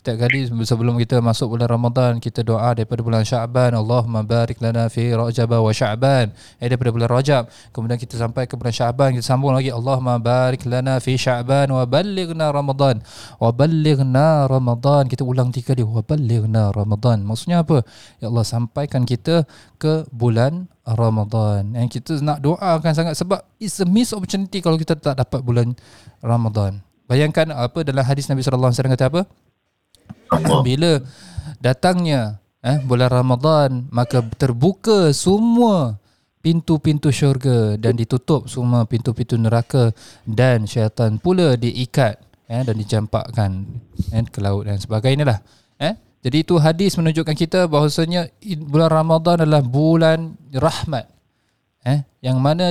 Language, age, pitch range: Malay, 20-39, 115-155 Hz